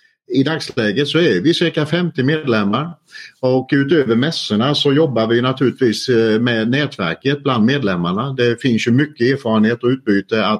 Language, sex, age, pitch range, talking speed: English, male, 50-69, 115-145 Hz, 145 wpm